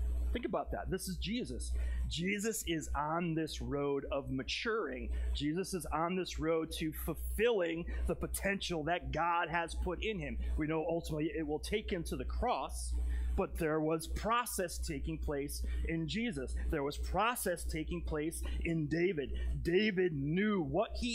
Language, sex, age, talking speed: English, male, 30-49, 160 wpm